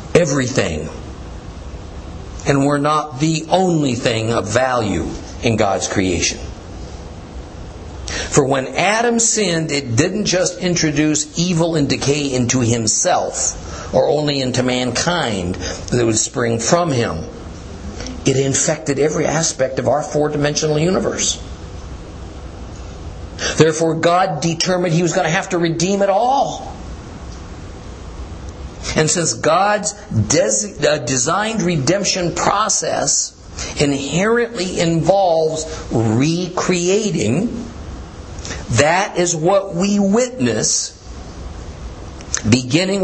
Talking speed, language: 95 wpm, English